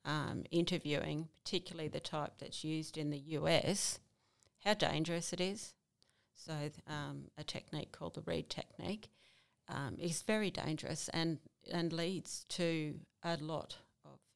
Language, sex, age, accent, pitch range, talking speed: English, female, 40-59, Australian, 155-180 Hz, 140 wpm